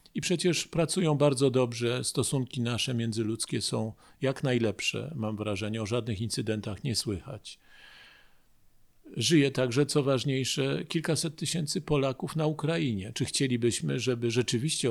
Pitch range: 115-150 Hz